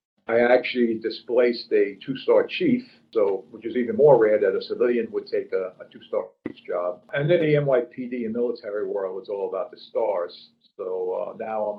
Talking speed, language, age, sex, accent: 195 wpm, English, 50-69, male, American